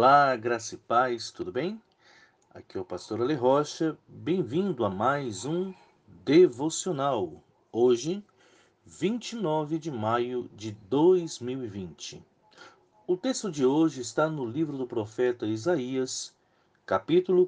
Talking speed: 115 wpm